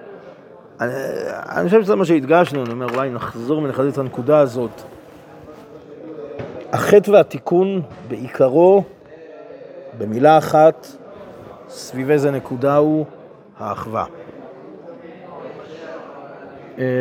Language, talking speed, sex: Hebrew, 80 wpm, male